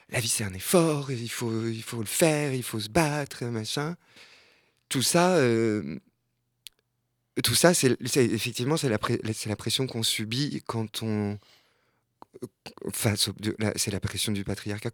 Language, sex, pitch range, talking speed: French, male, 105-130 Hz, 155 wpm